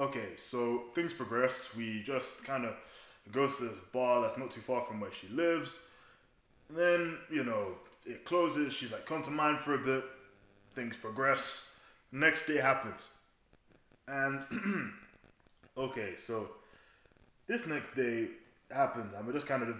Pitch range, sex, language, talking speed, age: 115-140 Hz, male, English, 150 wpm, 10-29